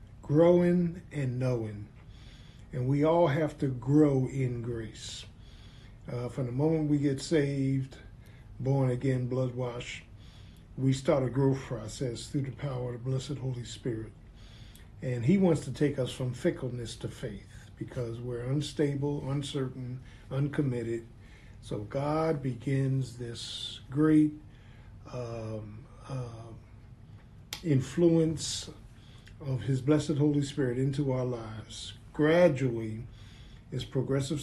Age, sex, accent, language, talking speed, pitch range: 50-69, male, American, English, 120 wpm, 115-145 Hz